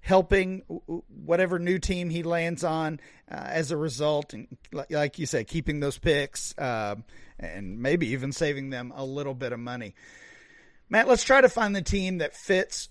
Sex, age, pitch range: male, 40-59, 140-175 Hz